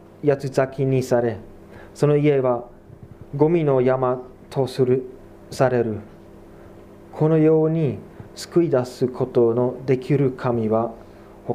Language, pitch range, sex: Japanese, 100-140 Hz, male